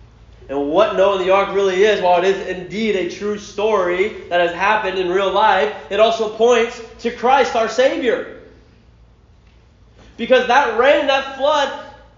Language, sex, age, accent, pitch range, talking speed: English, male, 30-49, American, 235-315 Hz, 160 wpm